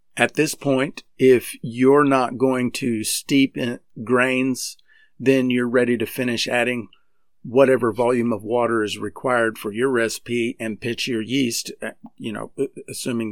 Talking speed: 150 wpm